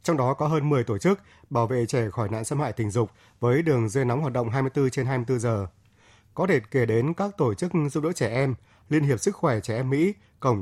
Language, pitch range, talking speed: Vietnamese, 115-145 Hz, 255 wpm